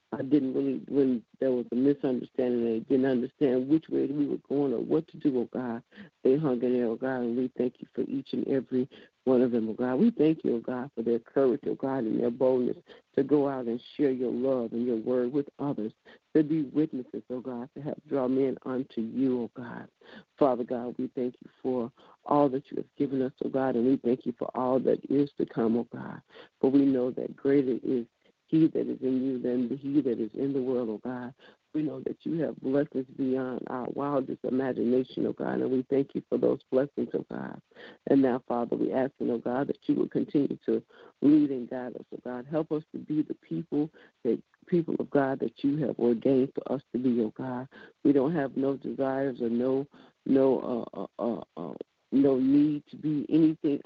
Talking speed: 225 wpm